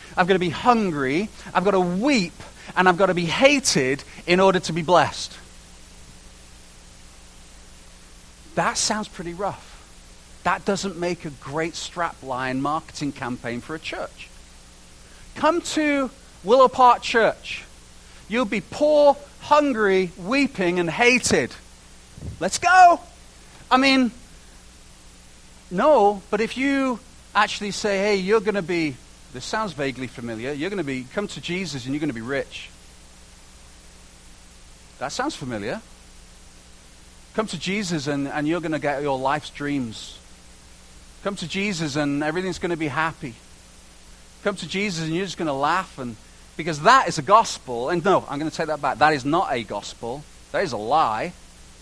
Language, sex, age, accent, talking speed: English, male, 40-59, British, 155 wpm